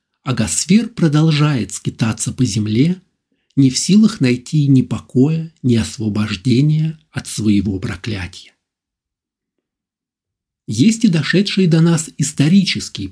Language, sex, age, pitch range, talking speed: Russian, male, 50-69, 110-155 Hz, 105 wpm